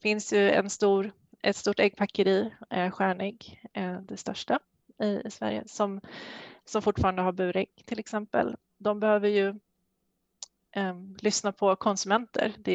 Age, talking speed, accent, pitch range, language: 20-39, 145 wpm, native, 190-215 Hz, Swedish